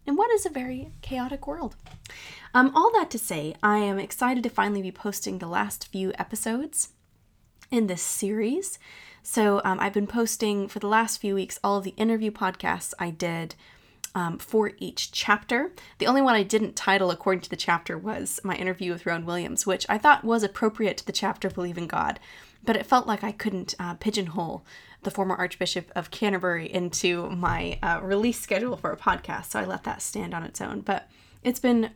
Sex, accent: female, American